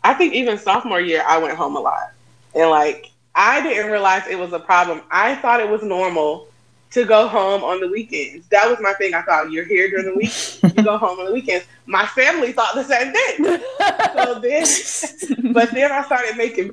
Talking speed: 215 wpm